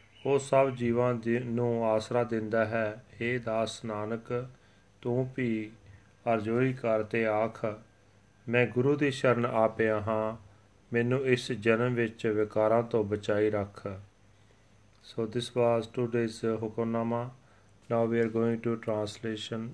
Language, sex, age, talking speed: Punjabi, male, 40-59, 120 wpm